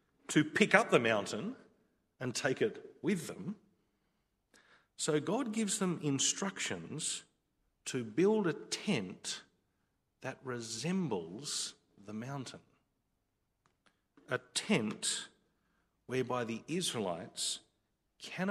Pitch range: 110-180 Hz